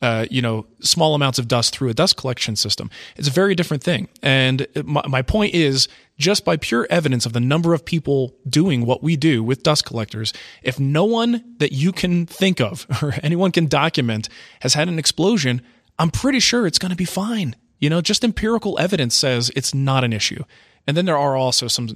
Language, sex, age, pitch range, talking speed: English, male, 30-49, 115-150 Hz, 215 wpm